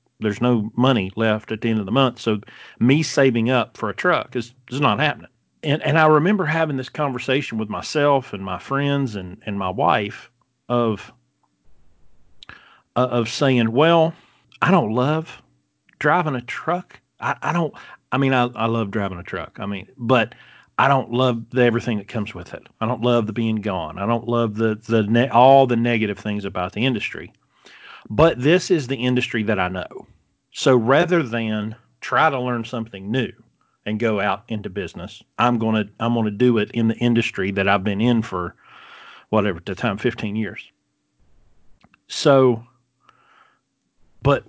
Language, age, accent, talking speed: English, 40-59, American, 180 wpm